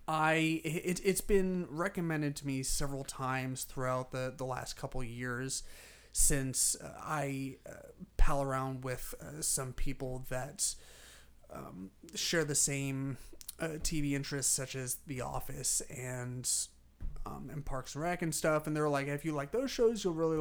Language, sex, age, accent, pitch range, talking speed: English, male, 30-49, American, 130-155 Hz, 155 wpm